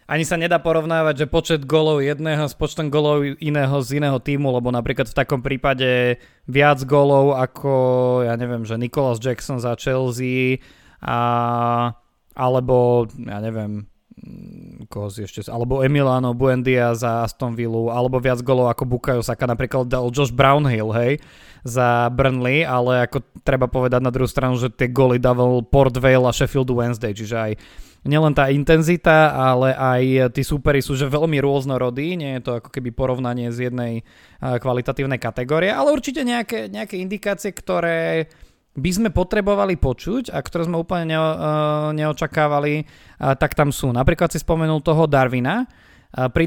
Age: 20-39